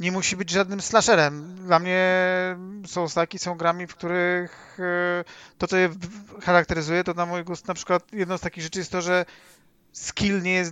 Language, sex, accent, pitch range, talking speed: Polish, male, native, 160-185 Hz, 185 wpm